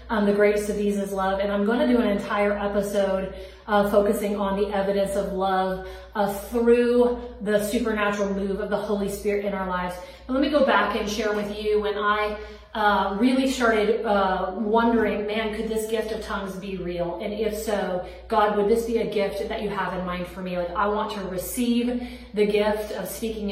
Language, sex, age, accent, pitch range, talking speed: English, female, 30-49, American, 195-215 Hz, 210 wpm